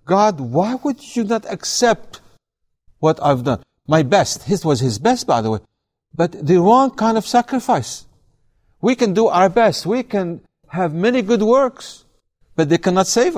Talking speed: 175 wpm